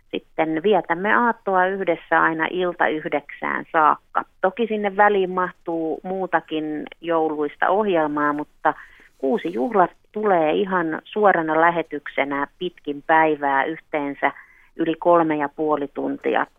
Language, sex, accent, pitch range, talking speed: Finnish, female, native, 150-180 Hz, 110 wpm